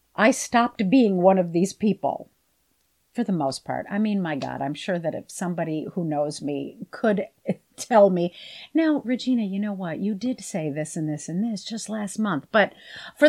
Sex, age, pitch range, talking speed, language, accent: female, 50-69, 180-245 Hz, 200 wpm, English, American